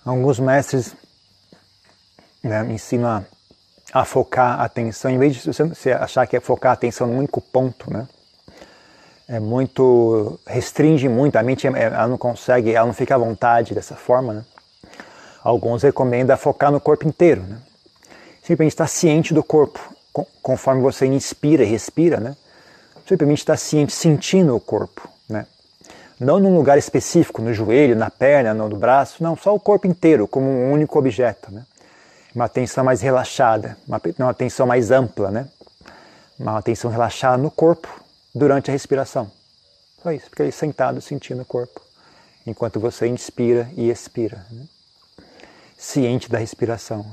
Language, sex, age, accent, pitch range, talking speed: Portuguese, male, 40-59, Brazilian, 115-140 Hz, 150 wpm